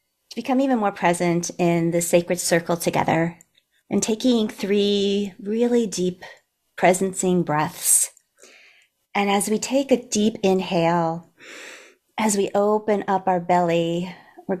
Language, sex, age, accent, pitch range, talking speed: English, female, 40-59, American, 175-205 Hz, 125 wpm